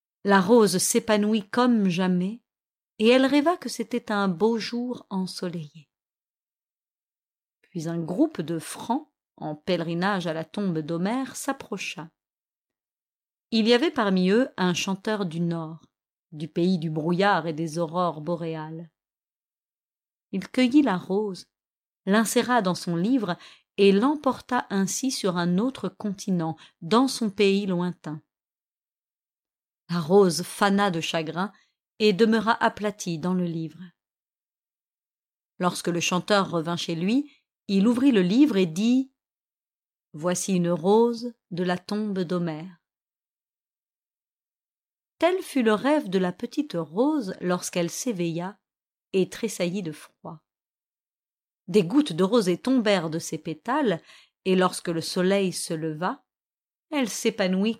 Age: 40-59